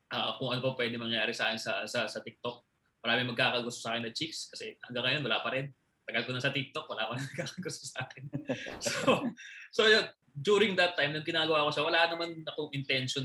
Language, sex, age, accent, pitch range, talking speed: Filipino, male, 20-39, native, 120-160 Hz, 210 wpm